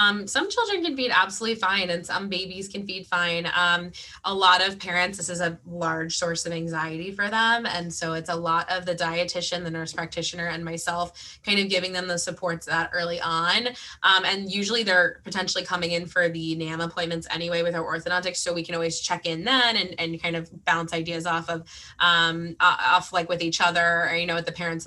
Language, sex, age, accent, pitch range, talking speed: English, female, 20-39, American, 170-190 Hz, 220 wpm